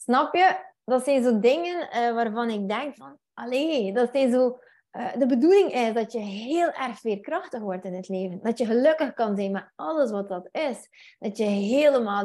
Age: 20-39